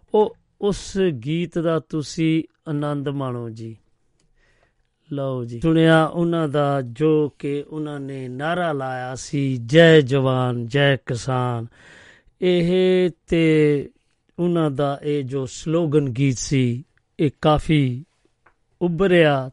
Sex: male